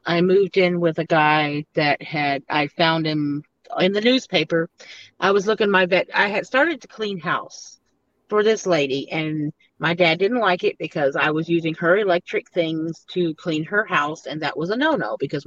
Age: 40-59